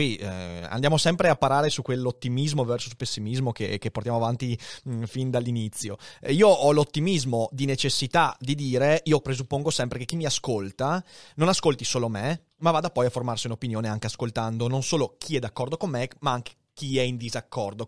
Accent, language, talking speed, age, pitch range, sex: native, Italian, 185 wpm, 30-49, 120-160 Hz, male